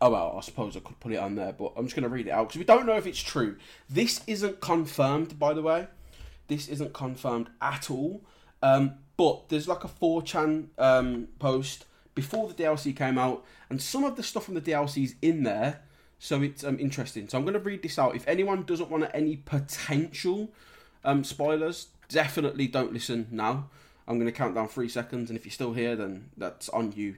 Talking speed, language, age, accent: 220 wpm, English, 20-39, British